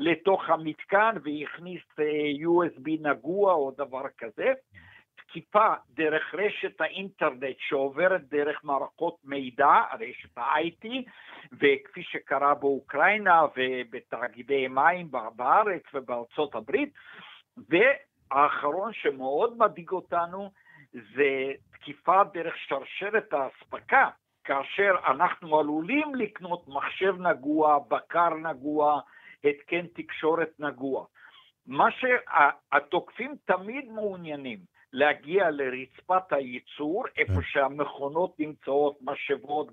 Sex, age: male, 60-79